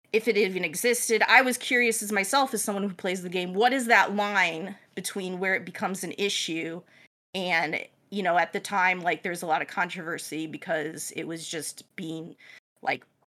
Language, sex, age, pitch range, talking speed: English, female, 30-49, 165-205 Hz, 195 wpm